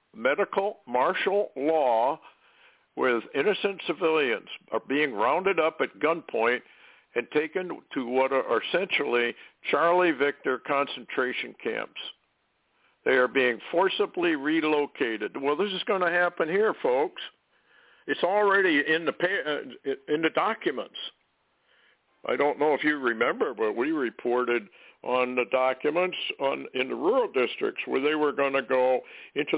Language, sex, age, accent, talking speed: English, male, 60-79, American, 130 wpm